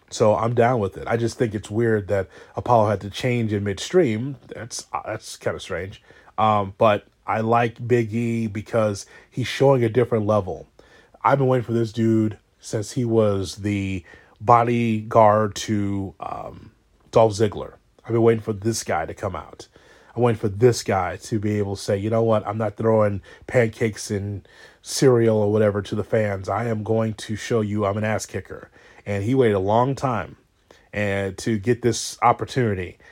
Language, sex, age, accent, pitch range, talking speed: English, male, 30-49, American, 100-115 Hz, 185 wpm